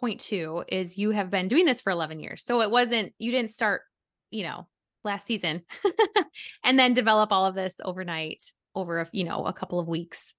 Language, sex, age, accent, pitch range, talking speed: English, female, 20-39, American, 180-255 Hz, 210 wpm